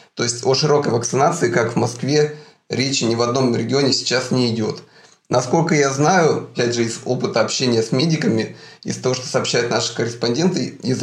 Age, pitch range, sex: 30-49, 115-140 Hz, male